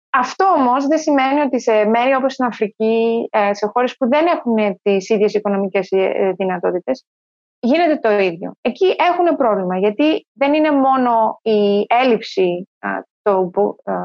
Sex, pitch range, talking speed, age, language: female, 200-295 Hz, 135 wpm, 20-39, Greek